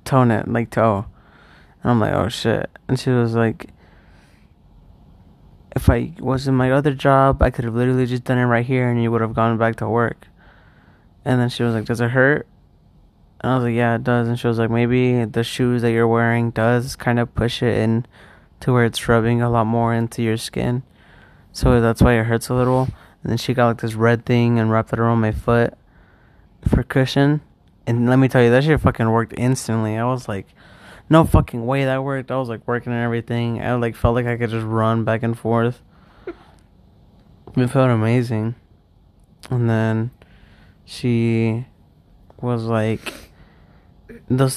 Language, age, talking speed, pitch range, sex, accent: English, 20-39, 195 wpm, 110-125 Hz, male, American